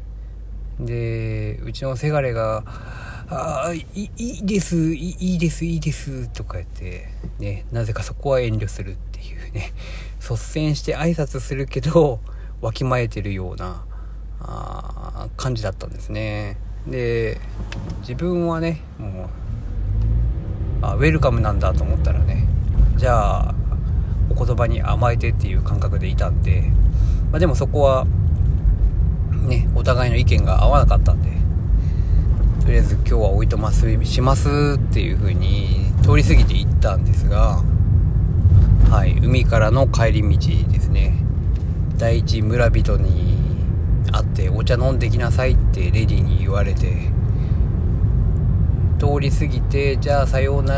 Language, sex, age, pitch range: Japanese, male, 40-59, 90-115 Hz